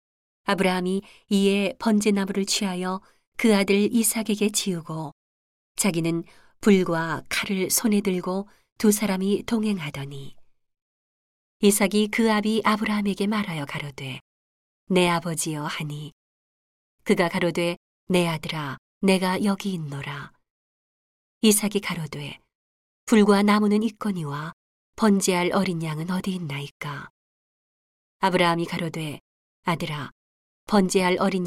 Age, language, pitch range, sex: 40-59, Korean, 165-205 Hz, female